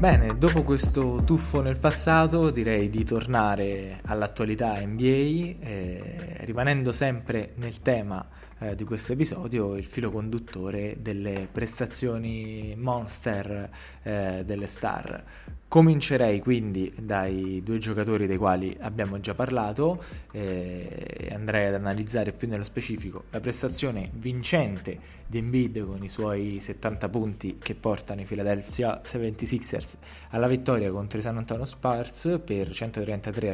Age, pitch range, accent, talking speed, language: 20-39, 100-120 Hz, native, 125 wpm, Italian